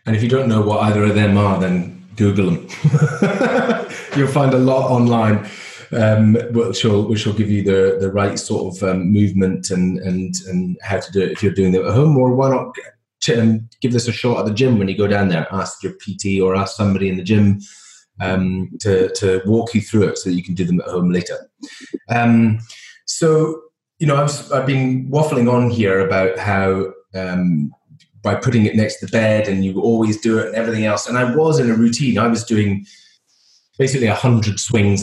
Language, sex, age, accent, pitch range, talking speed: English, male, 30-49, British, 95-120 Hz, 215 wpm